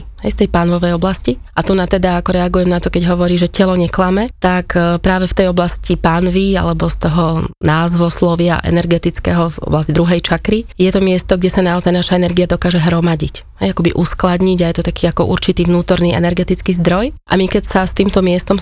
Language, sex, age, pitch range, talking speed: Slovak, female, 20-39, 170-185 Hz, 200 wpm